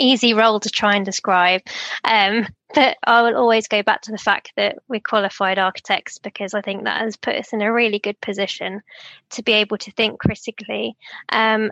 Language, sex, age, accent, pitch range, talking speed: English, female, 20-39, British, 200-225 Hz, 200 wpm